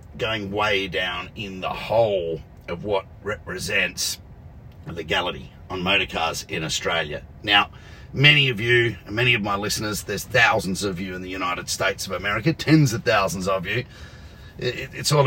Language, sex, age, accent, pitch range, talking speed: English, male, 40-59, Australian, 100-130 Hz, 170 wpm